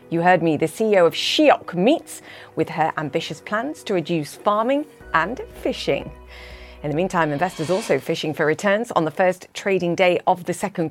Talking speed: 180 wpm